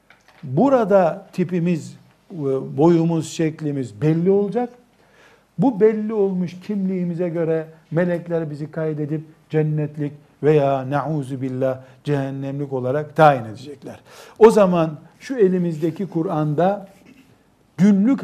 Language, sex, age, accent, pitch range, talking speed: Turkish, male, 60-79, native, 145-185 Hz, 90 wpm